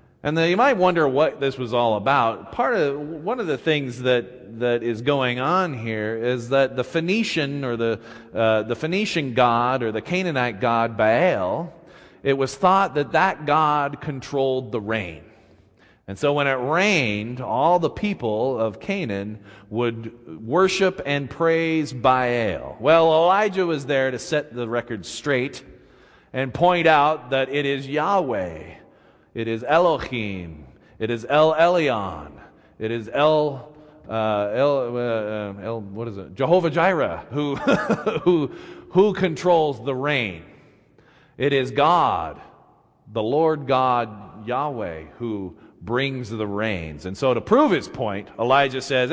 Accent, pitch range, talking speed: American, 115-165 Hz, 145 wpm